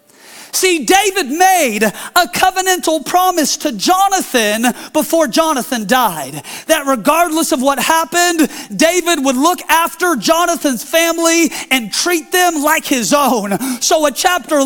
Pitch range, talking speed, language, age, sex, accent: 250-350 Hz, 125 wpm, English, 40-59, male, American